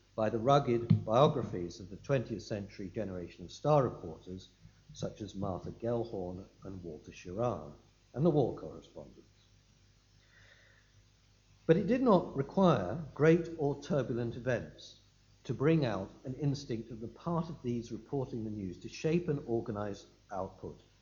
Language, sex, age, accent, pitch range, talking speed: English, male, 60-79, British, 100-140 Hz, 145 wpm